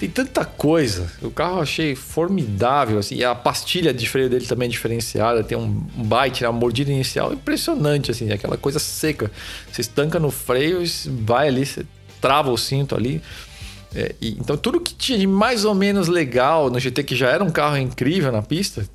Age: 40-59